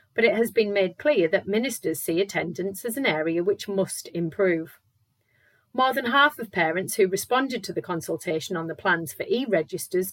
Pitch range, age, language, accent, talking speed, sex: 165-220 Hz, 40-59, English, British, 185 wpm, female